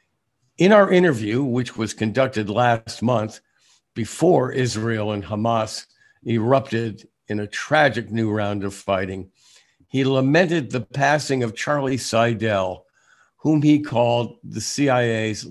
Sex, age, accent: male, 50-69, American